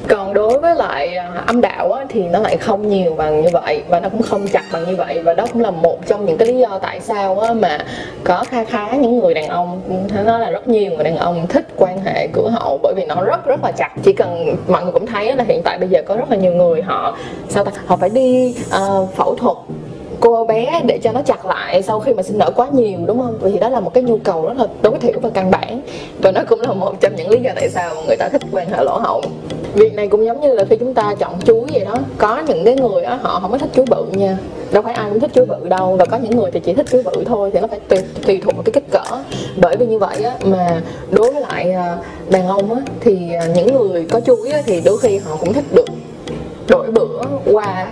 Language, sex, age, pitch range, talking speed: Vietnamese, female, 20-39, 185-255 Hz, 265 wpm